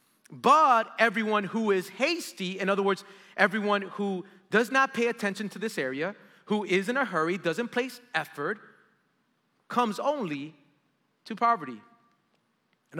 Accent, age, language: American, 30-49, English